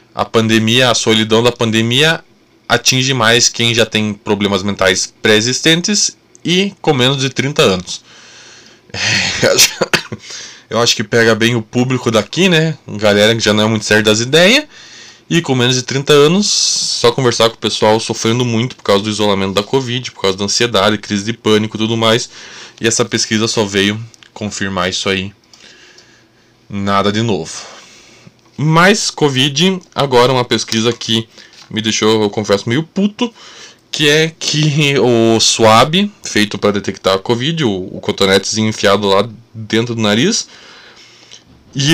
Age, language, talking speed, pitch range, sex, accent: 20-39, Portuguese, 155 wpm, 105-140 Hz, male, Brazilian